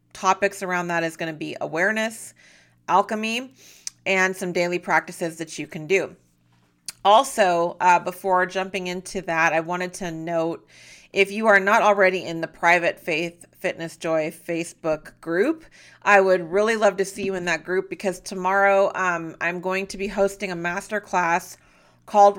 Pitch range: 170-200 Hz